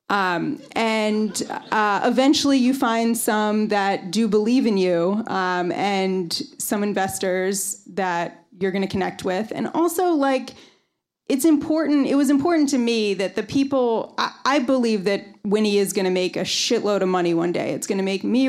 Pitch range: 185-225 Hz